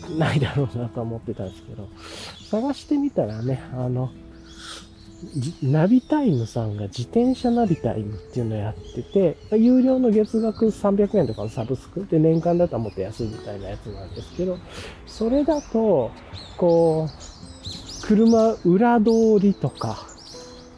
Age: 40-59